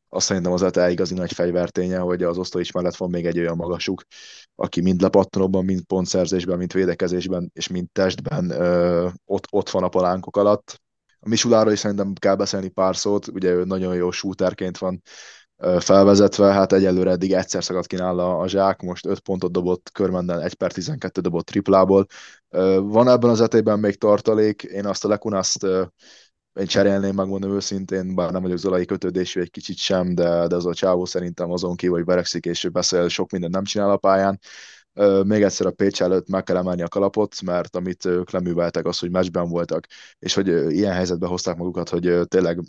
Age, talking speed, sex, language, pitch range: 20-39, 185 wpm, male, Hungarian, 90-95 Hz